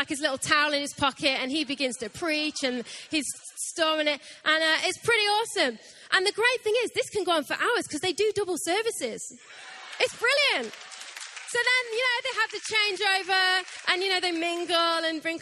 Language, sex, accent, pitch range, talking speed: English, female, British, 285-400 Hz, 210 wpm